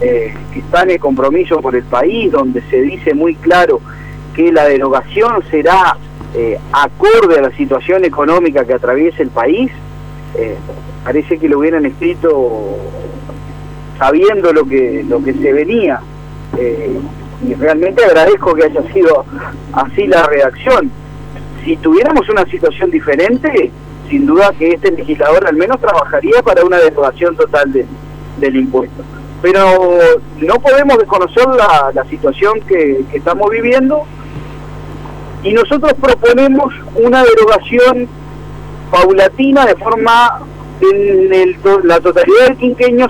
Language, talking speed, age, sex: Spanish, 130 wpm, 40-59, male